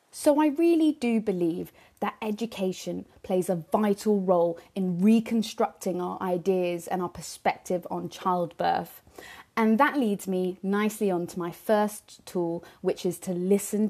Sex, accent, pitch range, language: female, British, 175-230 Hz, English